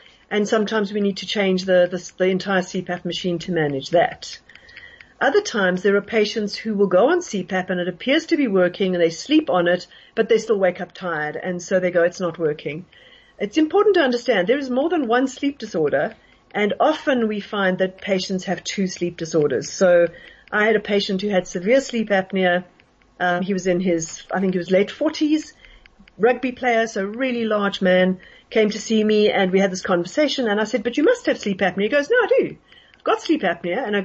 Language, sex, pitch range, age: English, female, 185-245 Hz, 40-59